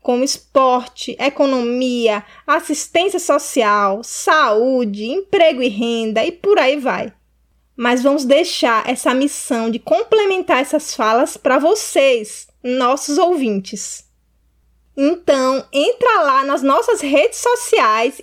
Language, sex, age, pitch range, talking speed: Portuguese, female, 20-39, 245-320 Hz, 110 wpm